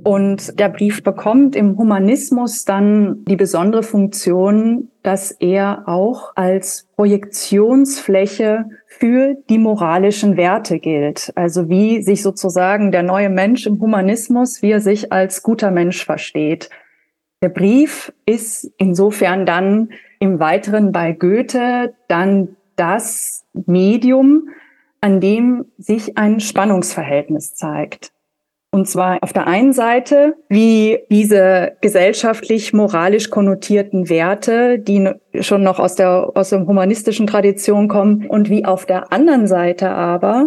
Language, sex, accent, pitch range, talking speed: German, female, German, 185-225 Hz, 120 wpm